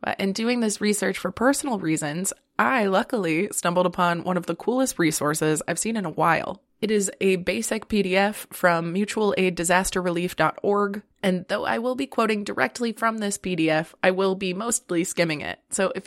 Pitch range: 175-210 Hz